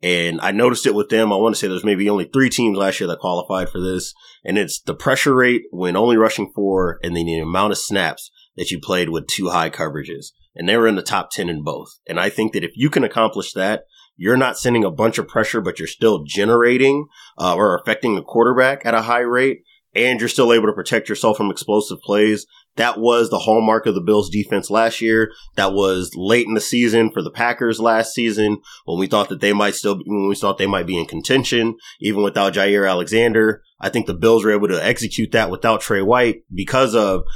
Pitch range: 95-115 Hz